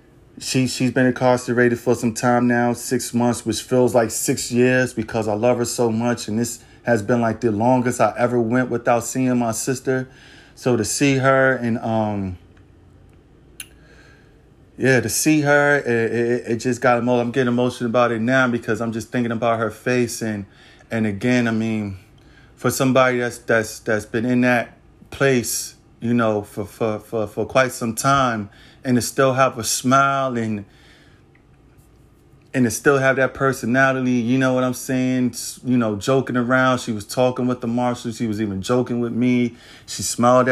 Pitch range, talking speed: 115-130 Hz, 180 wpm